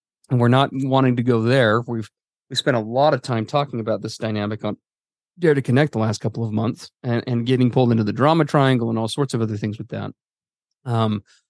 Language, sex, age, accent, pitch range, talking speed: English, male, 30-49, American, 115-145 Hz, 230 wpm